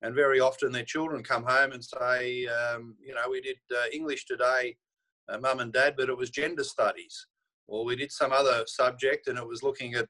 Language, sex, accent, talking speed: English, male, Australian, 220 wpm